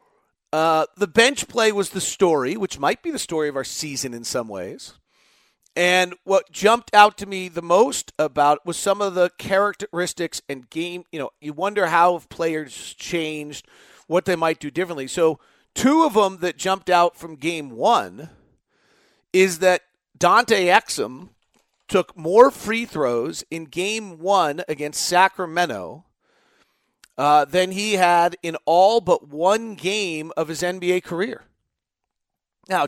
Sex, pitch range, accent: male, 155-195 Hz, American